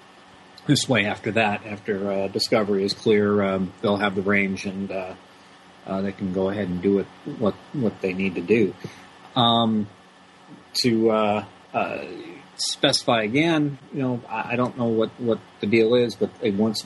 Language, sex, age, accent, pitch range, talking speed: English, male, 40-59, American, 100-110 Hz, 175 wpm